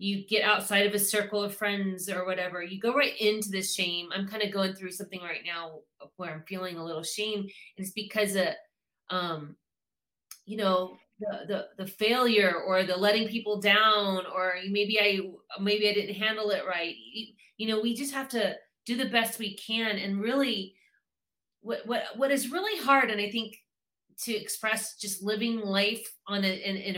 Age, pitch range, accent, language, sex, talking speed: 30-49, 195-255 Hz, American, English, female, 190 wpm